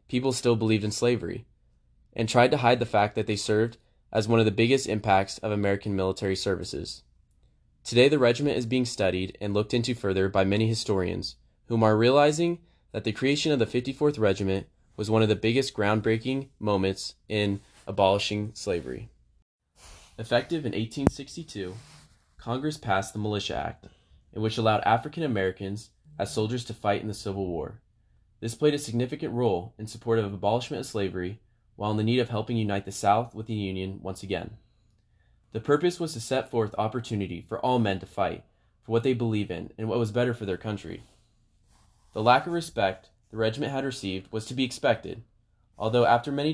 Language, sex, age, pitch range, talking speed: English, male, 20-39, 100-120 Hz, 185 wpm